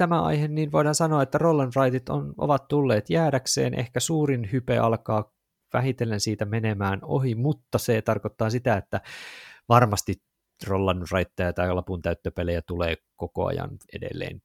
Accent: native